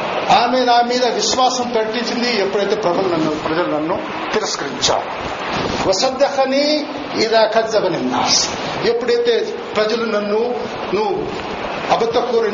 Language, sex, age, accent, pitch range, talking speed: Telugu, male, 50-69, native, 200-255 Hz, 95 wpm